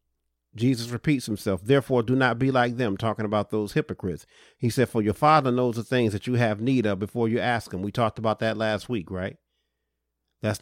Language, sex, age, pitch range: English, male, 40-59, 100-125 Hz